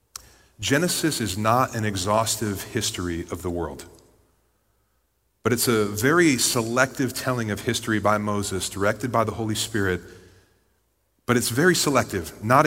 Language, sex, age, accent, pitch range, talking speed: English, male, 30-49, American, 115-155 Hz, 135 wpm